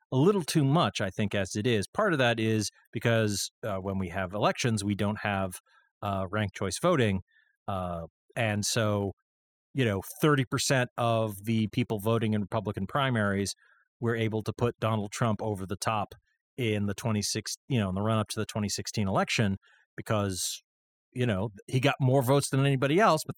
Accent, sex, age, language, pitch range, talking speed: American, male, 40-59, English, 100-135 Hz, 185 wpm